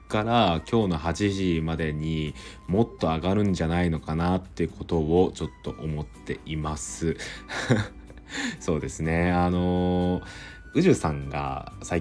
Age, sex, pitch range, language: 20-39, male, 75-90 Hz, Japanese